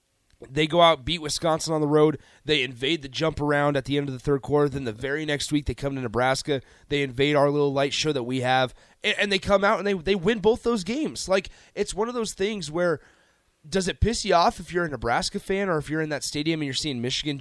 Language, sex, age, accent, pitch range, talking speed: English, male, 30-49, American, 120-165 Hz, 260 wpm